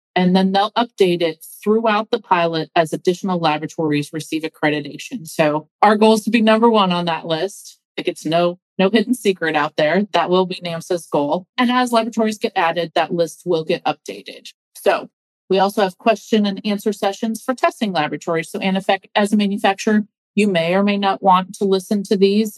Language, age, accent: English, 40-59, American